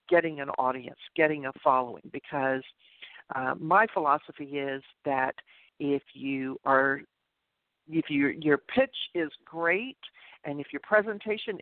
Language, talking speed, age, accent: English, 130 wpm, 50-69, American